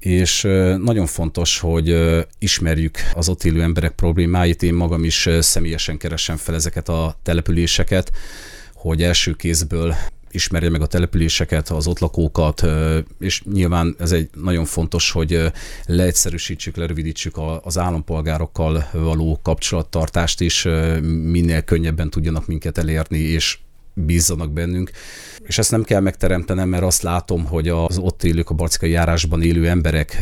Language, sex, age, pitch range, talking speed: Hungarian, male, 40-59, 80-90 Hz, 135 wpm